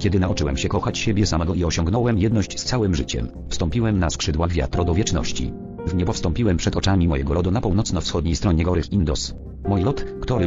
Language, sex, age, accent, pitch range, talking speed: English, male, 40-59, Polish, 80-105 Hz, 190 wpm